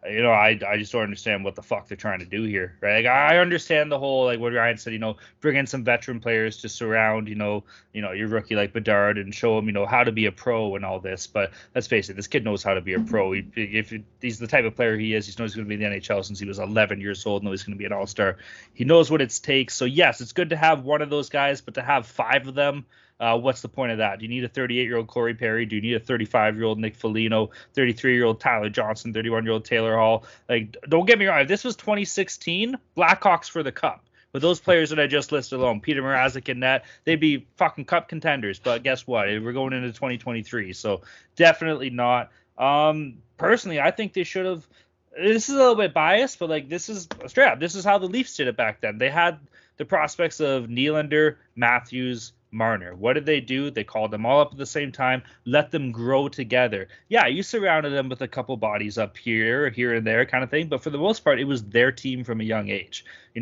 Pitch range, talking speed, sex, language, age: 110-145 Hz, 255 wpm, male, English, 20-39